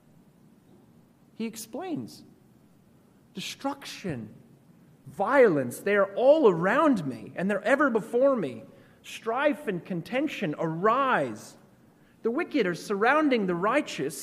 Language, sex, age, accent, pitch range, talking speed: English, male, 30-49, American, 150-220 Hz, 100 wpm